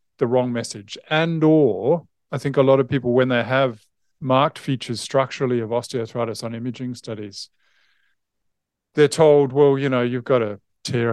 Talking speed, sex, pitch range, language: 165 wpm, male, 115-135 Hz, English